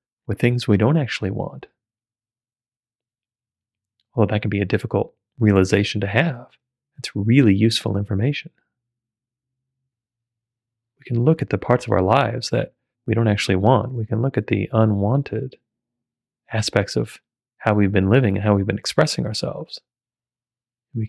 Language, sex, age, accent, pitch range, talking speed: English, male, 30-49, American, 110-120 Hz, 150 wpm